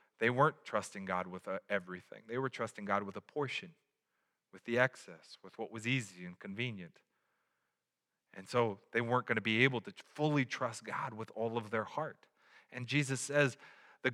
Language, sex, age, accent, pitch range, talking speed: English, male, 30-49, American, 120-175 Hz, 180 wpm